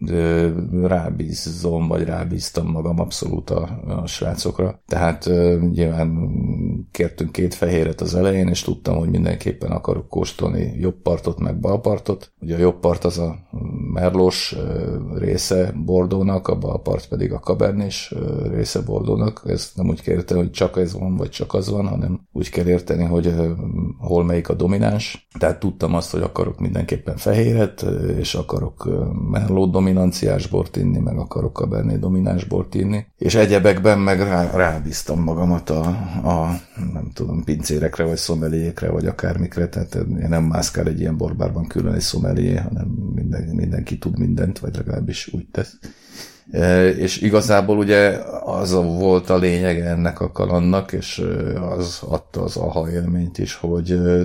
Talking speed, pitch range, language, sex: 155 wpm, 85-95 Hz, Hungarian, male